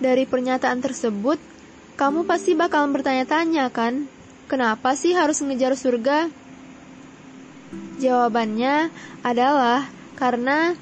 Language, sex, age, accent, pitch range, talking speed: Indonesian, female, 10-29, native, 245-290 Hz, 90 wpm